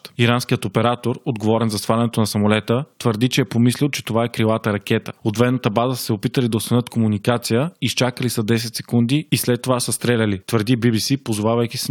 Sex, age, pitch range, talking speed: male, 20-39, 115-130 Hz, 180 wpm